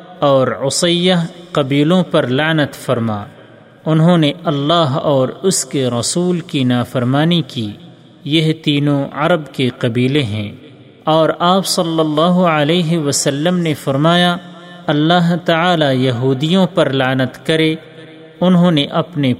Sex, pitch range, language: male, 135-175 Hz, Urdu